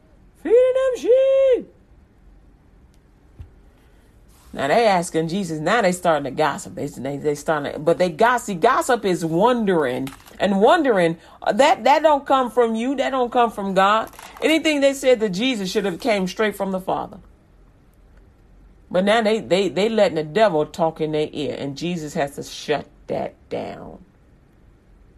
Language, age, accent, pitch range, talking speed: English, 40-59, American, 160-225 Hz, 155 wpm